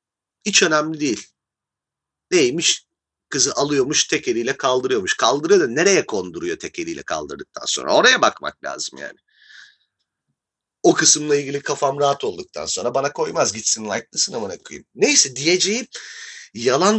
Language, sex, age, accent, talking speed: Turkish, male, 40-59, native, 125 wpm